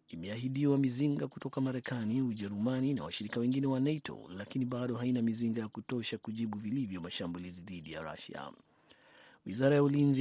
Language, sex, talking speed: Swahili, male, 145 wpm